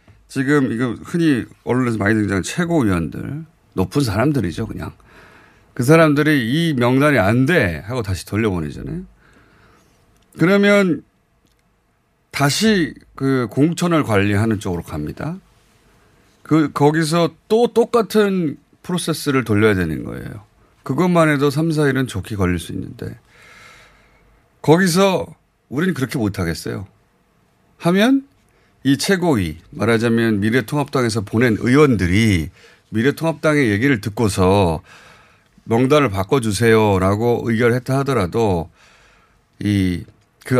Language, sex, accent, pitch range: Korean, male, native, 105-155 Hz